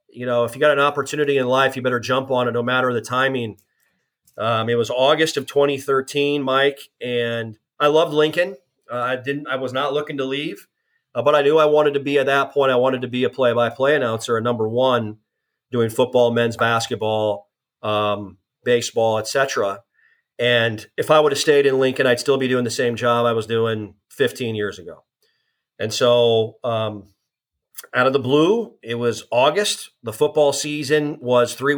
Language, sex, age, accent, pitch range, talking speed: English, male, 40-59, American, 120-140 Hz, 195 wpm